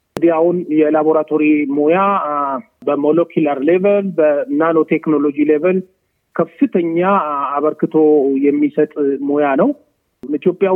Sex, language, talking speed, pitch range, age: male, Amharic, 75 wpm, 145-185 Hz, 30-49